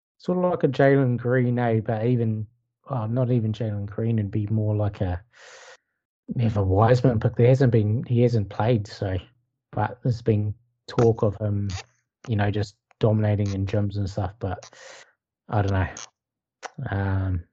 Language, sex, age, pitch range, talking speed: English, male, 20-39, 105-125 Hz, 170 wpm